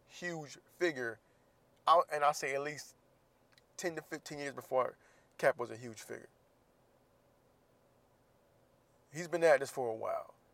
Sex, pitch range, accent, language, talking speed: male, 120-145 Hz, American, English, 140 wpm